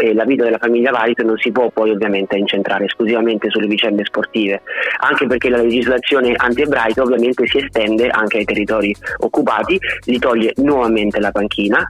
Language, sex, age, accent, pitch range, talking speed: Italian, male, 30-49, native, 110-125 Hz, 165 wpm